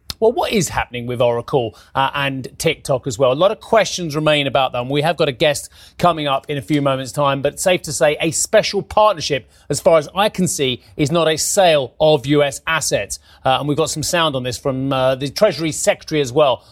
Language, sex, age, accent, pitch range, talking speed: English, male, 30-49, British, 125-160 Hz, 235 wpm